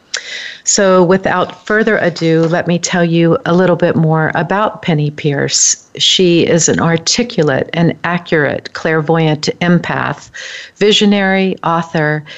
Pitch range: 160-200 Hz